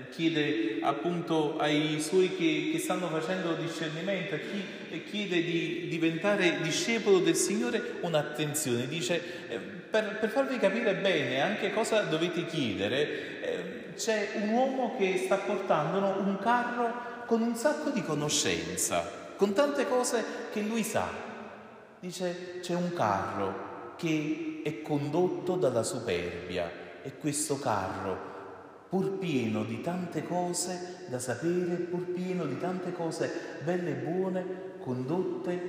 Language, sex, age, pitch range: Italian, male, 30-49, 125-185 Hz